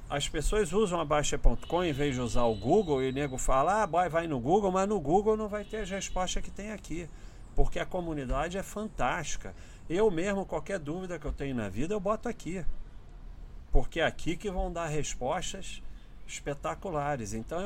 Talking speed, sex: 190 wpm, male